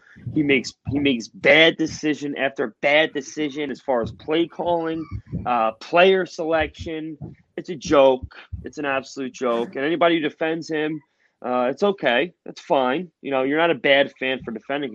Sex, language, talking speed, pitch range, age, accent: male, English, 175 wpm, 125-190 Hz, 20-39, American